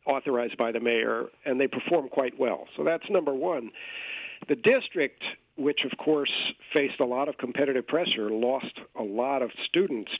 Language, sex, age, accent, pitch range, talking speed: English, male, 50-69, American, 125-170 Hz, 170 wpm